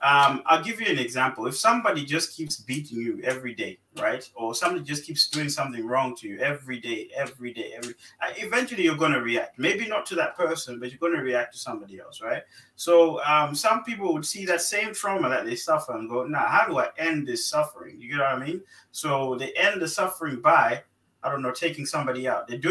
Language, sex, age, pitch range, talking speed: English, male, 20-39, 125-165 Hz, 235 wpm